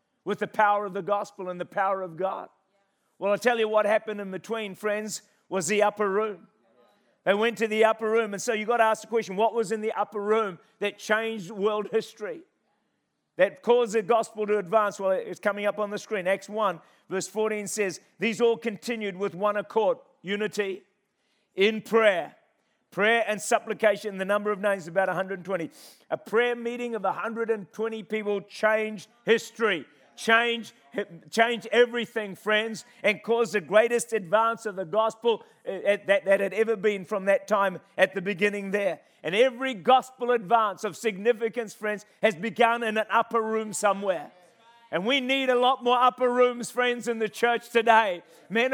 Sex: male